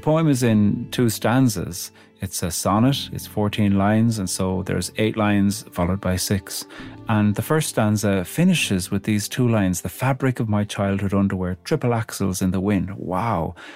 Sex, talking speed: male, 180 wpm